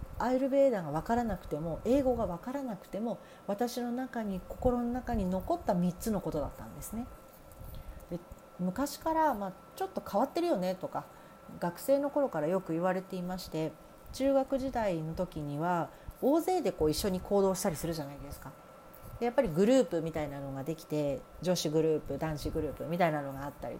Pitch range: 160-235 Hz